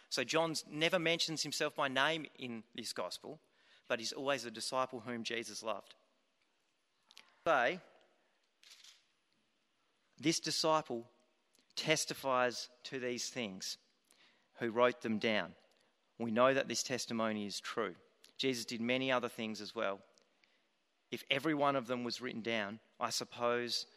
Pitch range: 115-140 Hz